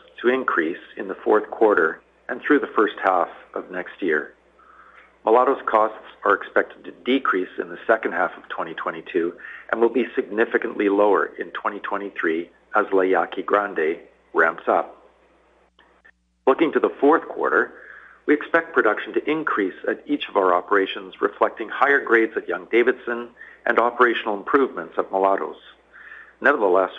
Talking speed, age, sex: 145 wpm, 50-69, male